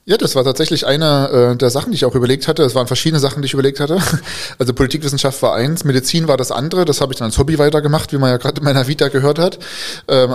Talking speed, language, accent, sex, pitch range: 265 wpm, German, German, male, 125-145 Hz